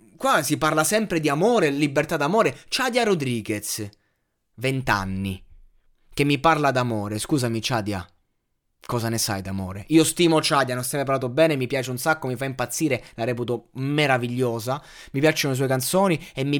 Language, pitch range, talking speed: Italian, 105-145 Hz, 165 wpm